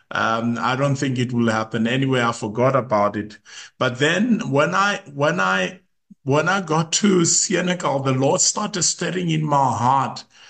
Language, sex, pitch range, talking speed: English, male, 120-155 Hz, 170 wpm